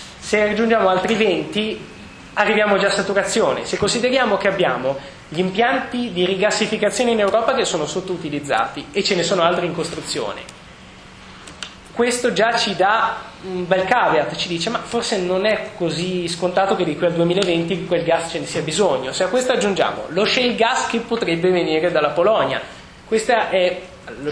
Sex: male